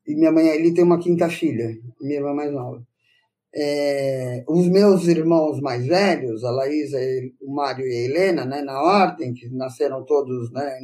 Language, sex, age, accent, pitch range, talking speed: Portuguese, male, 20-39, Brazilian, 145-205 Hz, 175 wpm